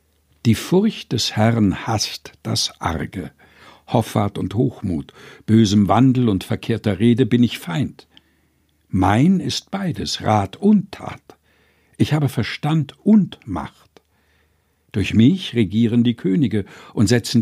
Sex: male